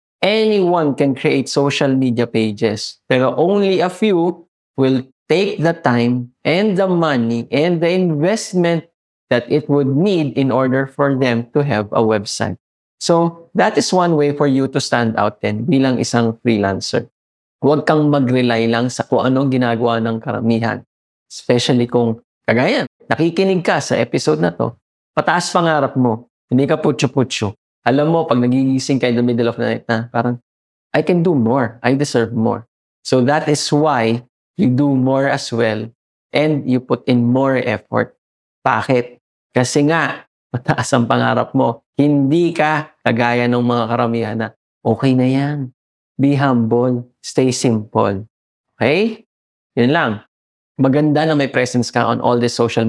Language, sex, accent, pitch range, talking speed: English, male, Filipino, 120-145 Hz, 160 wpm